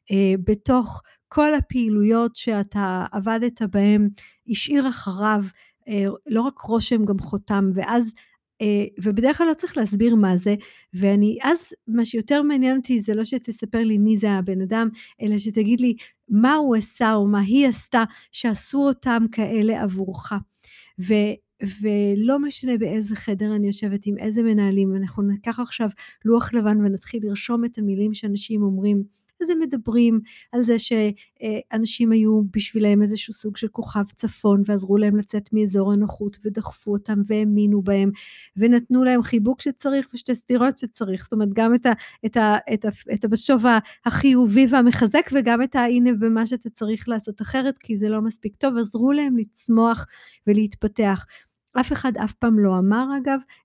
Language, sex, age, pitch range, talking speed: Hebrew, female, 50-69, 205-240 Hz, 145 wpm